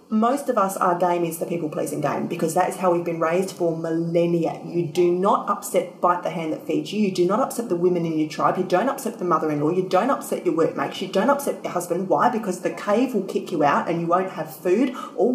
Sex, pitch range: female, 170-220 Hz